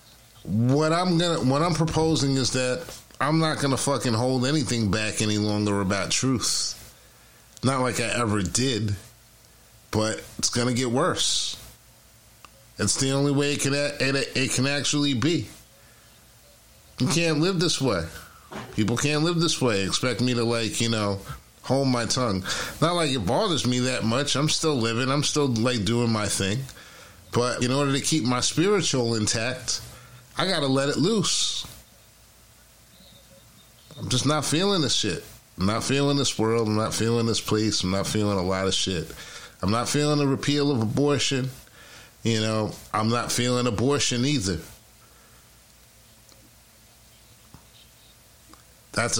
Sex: male